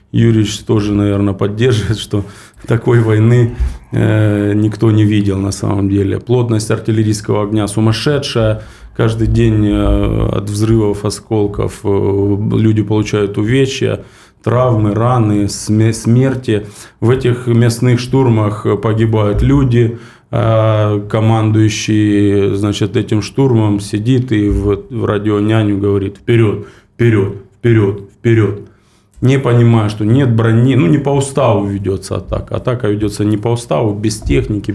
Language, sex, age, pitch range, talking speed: Russian, male, 20-39, 105-115 Hz, 125 wpm